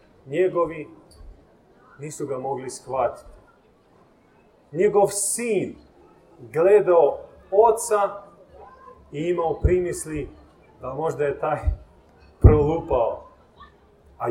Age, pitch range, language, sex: 40-59, 155-220 Hz, Croatian, male